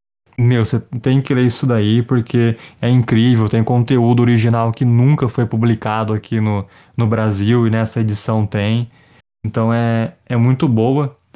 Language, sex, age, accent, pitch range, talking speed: Portuguese, male, 20-39, Brazilian, 115-135 Hz, 160 wpm